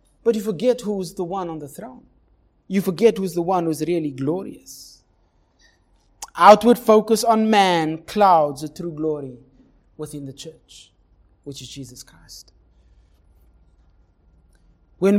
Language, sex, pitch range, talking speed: English, male, 135-200 Hz, 130 wpm